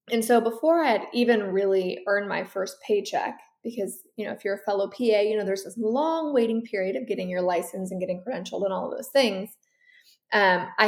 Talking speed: 220 wpm